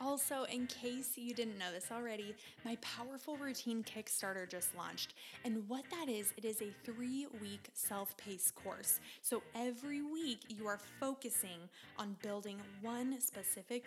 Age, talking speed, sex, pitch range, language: 20-39, 145 wpm, female, 210-255 Hz, English